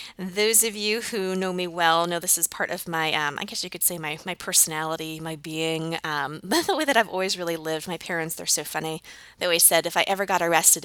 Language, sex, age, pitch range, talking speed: English, female, 20-39, 165-225 Hz, 250 wpm